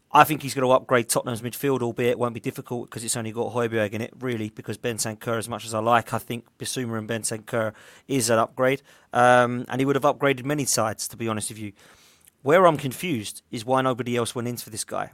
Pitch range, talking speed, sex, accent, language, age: 115-135 Hz, 250 wpm, male, British, English, 30-49